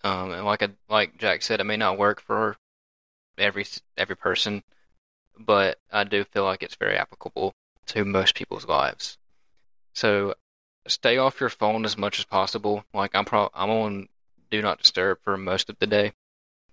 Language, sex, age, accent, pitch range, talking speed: English, male, 20-39, American, 95-105 Hz, 170 wpm